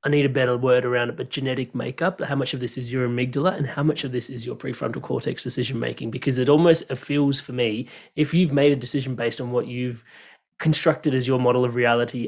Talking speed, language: 240 wpm, English